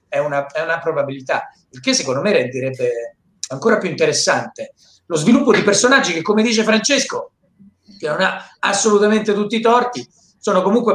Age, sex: 40-59, male